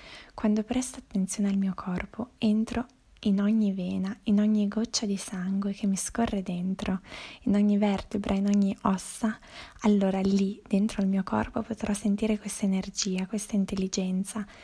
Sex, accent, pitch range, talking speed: female, native, 190-215 Hz, 150 wpm